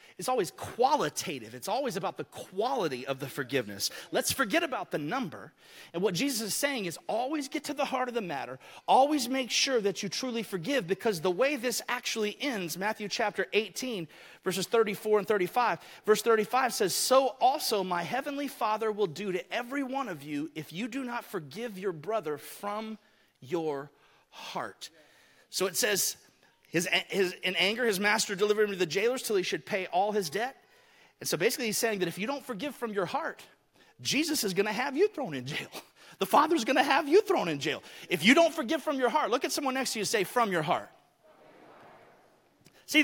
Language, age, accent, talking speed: English, 30-49, American, 200 wpm